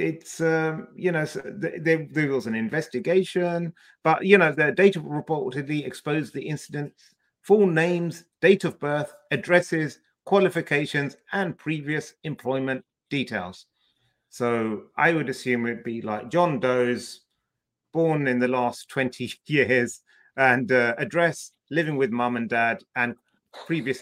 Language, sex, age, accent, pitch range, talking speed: English, male, 30-49, British, 120-165 Hz, 140 wpm